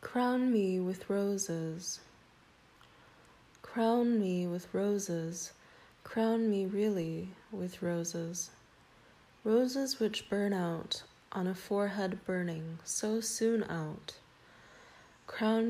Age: 20-39